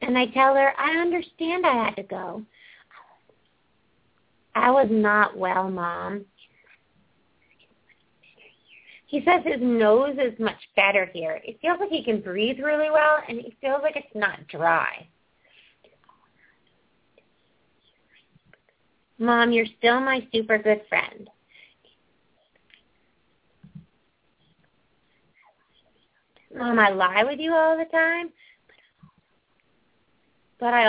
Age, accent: 30-49, American